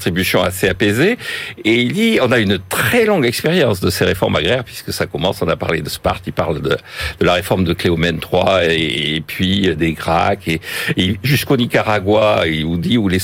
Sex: male